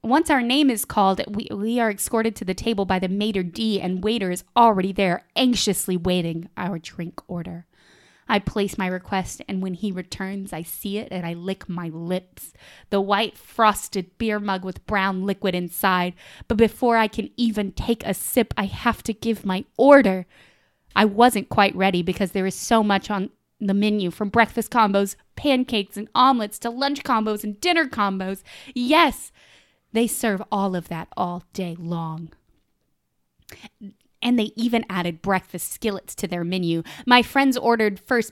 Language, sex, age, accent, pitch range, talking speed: English, female, 20-39, American, 185-235 Hz, 175 wpm